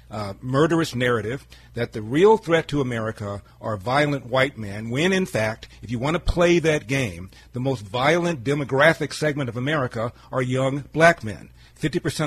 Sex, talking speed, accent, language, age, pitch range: male, 175 wpm, American, English, 40-59, 120-150 Hz